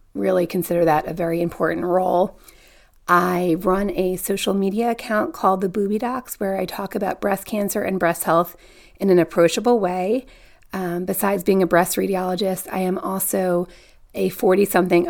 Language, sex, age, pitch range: English, female, 30-49, 175-200 Hz